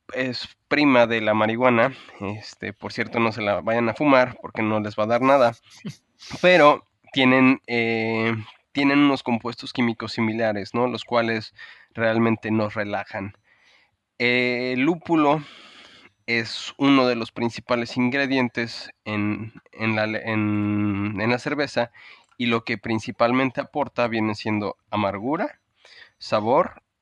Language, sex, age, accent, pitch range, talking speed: Spanish, male, 20-39, Mexican, 110-125 Hz, 130 wpm